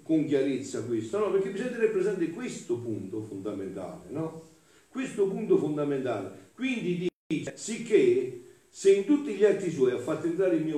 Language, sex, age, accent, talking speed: Italian, male, 50-69, native, 165 wpm